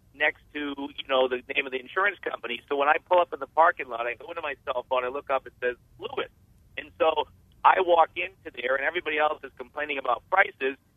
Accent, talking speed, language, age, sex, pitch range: American, 240 wpm, English, 50-69, male, 130-180 Hz